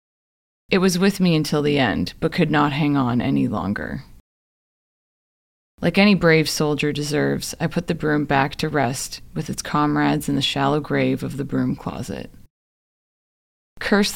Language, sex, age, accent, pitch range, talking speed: English, female, 20-39, American, 130-165 Hz, 160 wpm